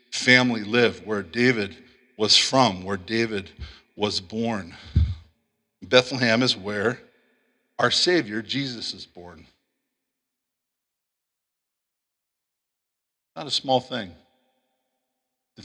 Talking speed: 90 wpm